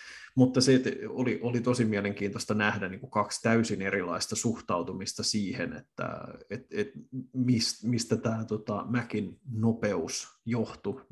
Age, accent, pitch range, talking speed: 30-49, native, 105-120 Hz, 125 wpm